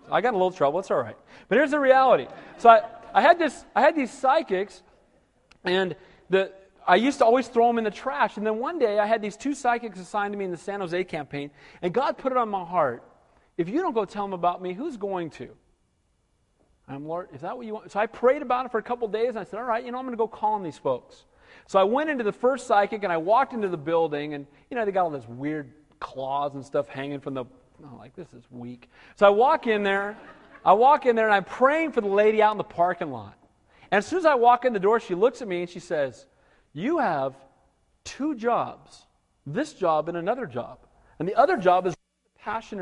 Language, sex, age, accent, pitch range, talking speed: English, male, 40-59, American, 165-240 Hz, 260 wpm